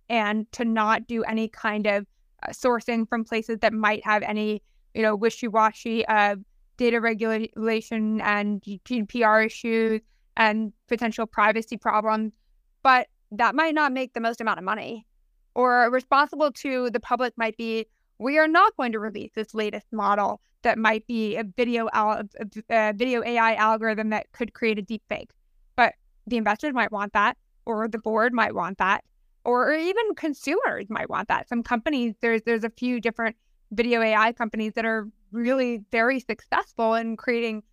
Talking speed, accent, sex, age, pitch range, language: 165 wpm, American, female, 20-39, 220-255 Hz, English